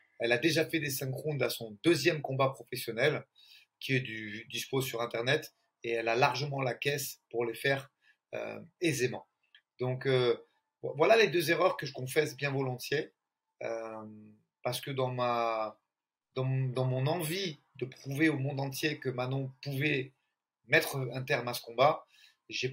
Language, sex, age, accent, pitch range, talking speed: French, male, 30-49, French, 125-155 Hz, 170 wpm